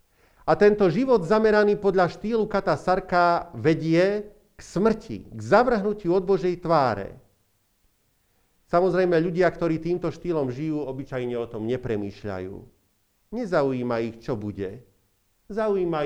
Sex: male